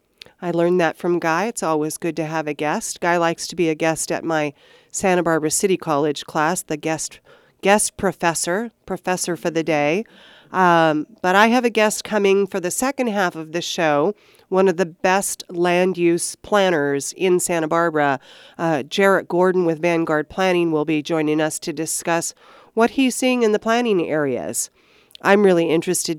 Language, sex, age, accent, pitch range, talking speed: English, female, 40-59, American, 160-200 Hz, 180 wpm